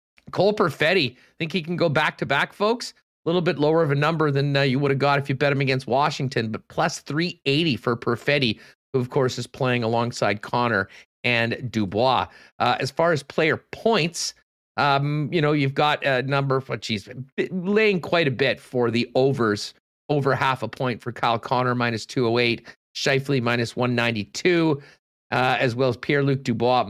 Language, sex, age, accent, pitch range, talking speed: English, male, 40-59, American, 120-150 Hz, 200 wpm